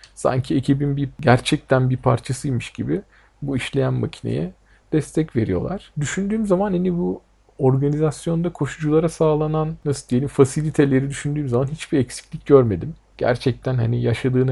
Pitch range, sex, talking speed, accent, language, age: 115-155 Hz, male, 125 wpm, native, Turkish, 50-69